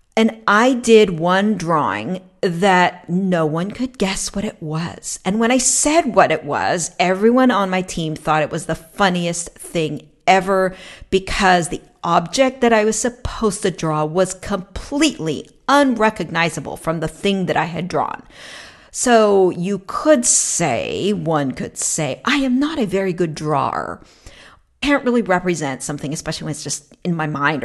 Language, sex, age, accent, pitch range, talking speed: English, female, 50-69, American, 170-225 Hz, 165 wpm